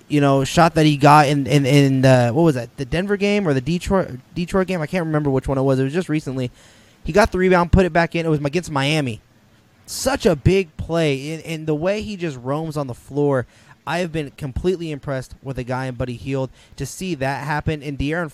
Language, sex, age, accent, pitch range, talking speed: English, male, 20-39, American, 130-155 Hz, 250 wpm